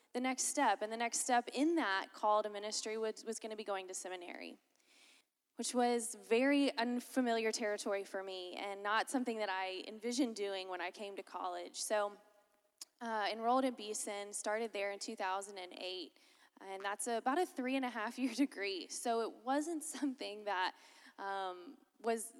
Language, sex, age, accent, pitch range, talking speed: English, female, 10-29, American, 205-245 Hz, 175 wpm